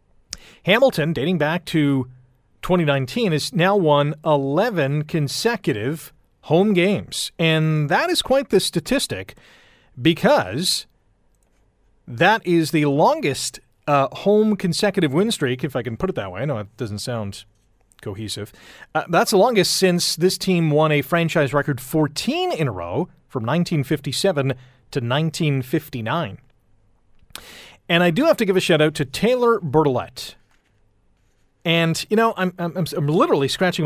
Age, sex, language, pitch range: 30-49, male, English, 130-175 Hz